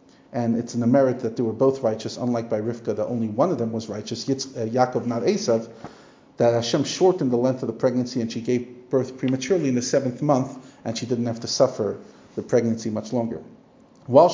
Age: 40-59